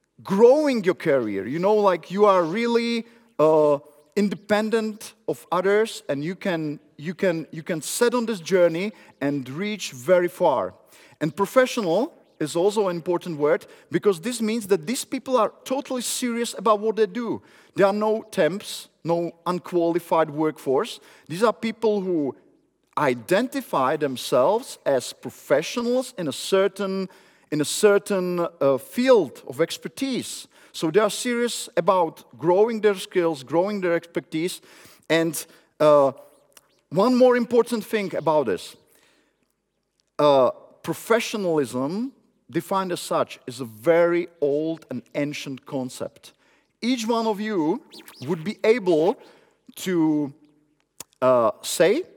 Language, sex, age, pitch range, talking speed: Czech, male, 40-59, 160-230 Hz, 130 wpm